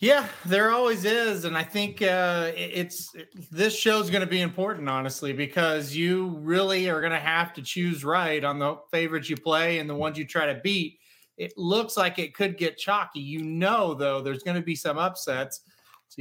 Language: English